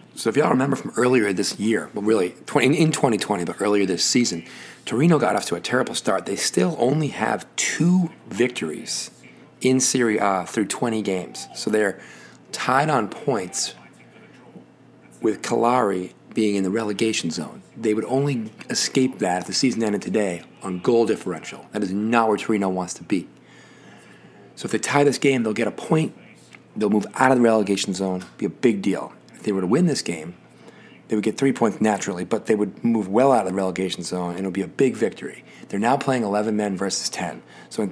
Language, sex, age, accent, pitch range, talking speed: English, male, 30-49, American, 100-125 Hz, 205 wpm